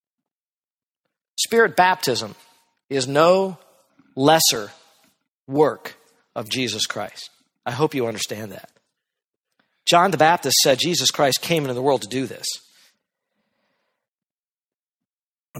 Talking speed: 110 wpm